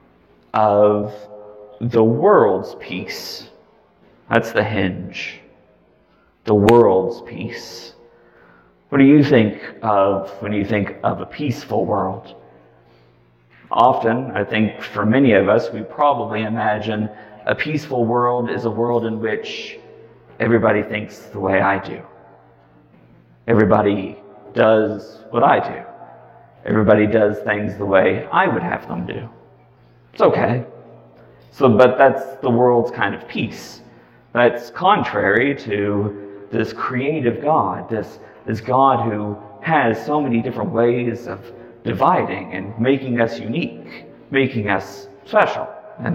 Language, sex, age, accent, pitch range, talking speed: English, male, 40-59, American, 105-130 Hz, 125 wpm